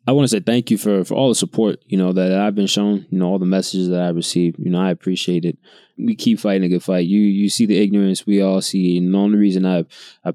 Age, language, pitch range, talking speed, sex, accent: 20-39, English, 90-105 Hz, 290 wpm, male, American